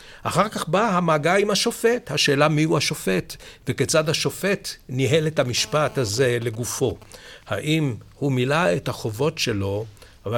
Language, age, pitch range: Hebrew, 60-79, 120-155 Hz